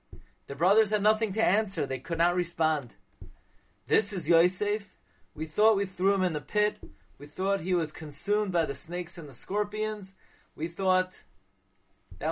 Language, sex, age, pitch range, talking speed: English, male, 30-49, 155-215 Hz, 170 wpm